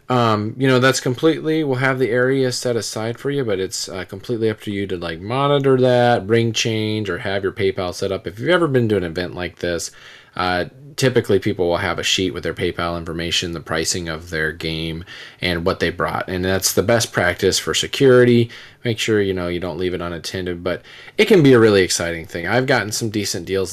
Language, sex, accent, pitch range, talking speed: English, male, American, 90-115 Hz, 230 wpm